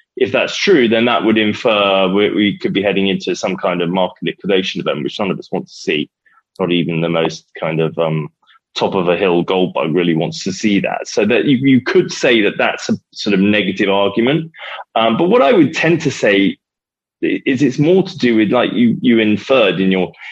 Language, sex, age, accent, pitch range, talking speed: English, male, 20-39, British, 90-120 Hz, 225 wpm